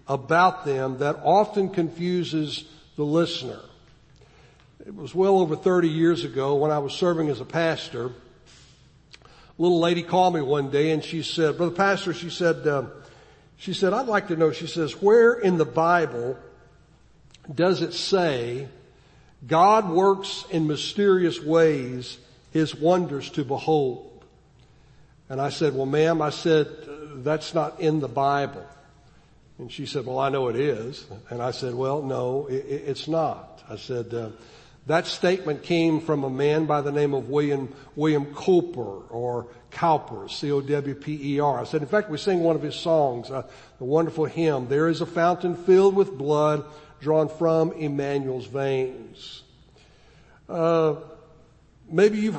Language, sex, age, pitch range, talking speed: English, male, 60-79, 140-170 Hz, 155 wpm